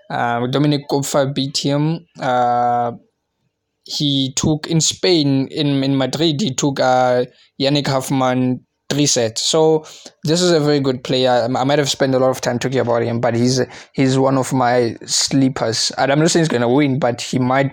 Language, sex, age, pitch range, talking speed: English, male, 20-39, 125-150 Hz, 195 wpm